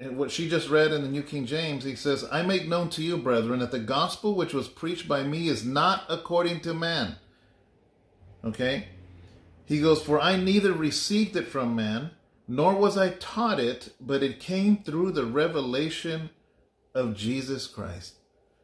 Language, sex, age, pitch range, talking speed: English, male, 30-49, 135-175 Hz, 175 wpm